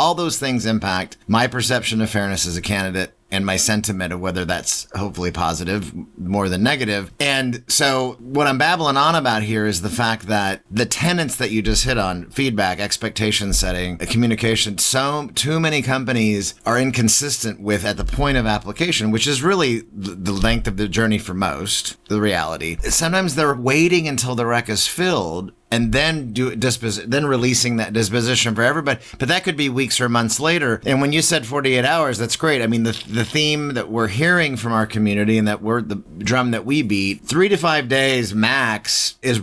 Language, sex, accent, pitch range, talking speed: English, male, American, 105-135 Hz, 200 wpm